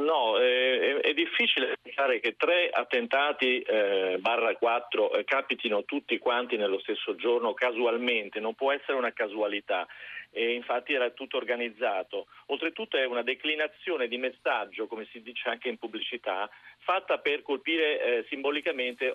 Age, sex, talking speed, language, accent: 40-59, male, 145 wpm, Italian, native